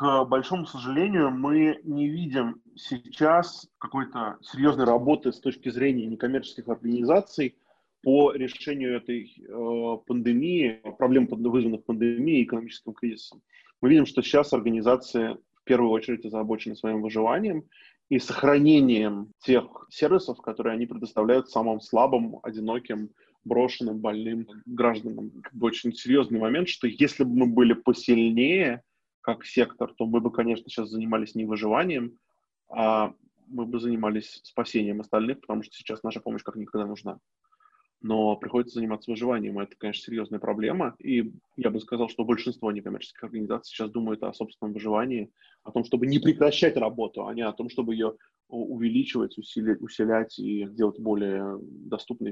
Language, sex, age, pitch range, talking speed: Russian, male, 20-39, 110-130 Hz, 140 wpm